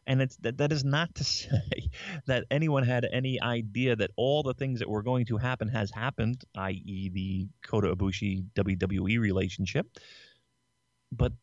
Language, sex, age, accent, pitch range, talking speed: English, male, 30-49, American, 100-135 Hz, 160 wpm